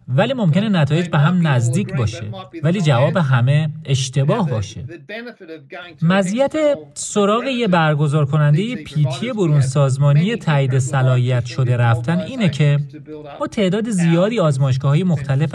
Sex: male